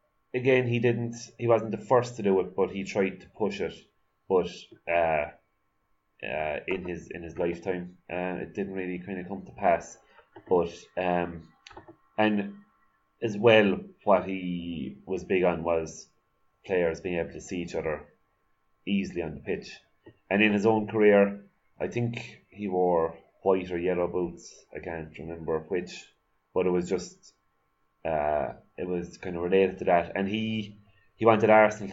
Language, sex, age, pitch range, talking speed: English, male, 30-49, 90-100 Hz, 170 wpm